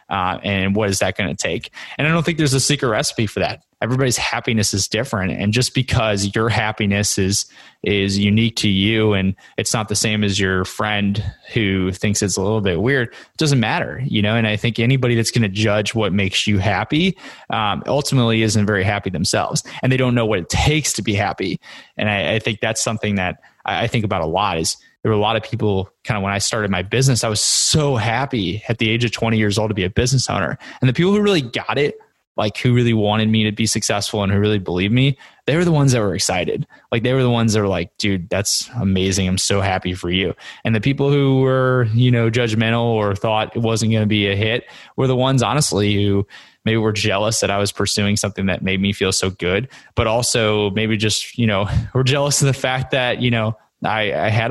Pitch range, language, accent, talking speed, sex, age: 100-120 Hz, English, American, 240 wpm, male, 20-39